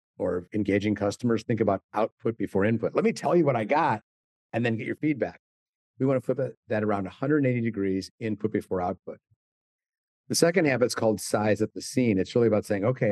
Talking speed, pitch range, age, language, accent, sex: 200 wpm, 100-130 Hz, 50-69, English, American, male